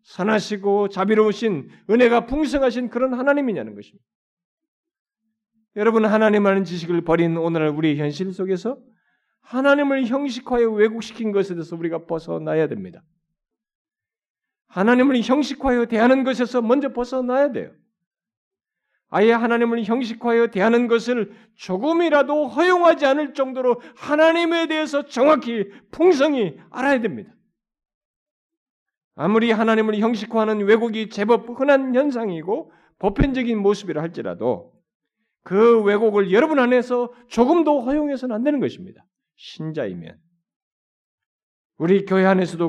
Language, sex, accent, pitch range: Korean, male, native, 190-255 Hz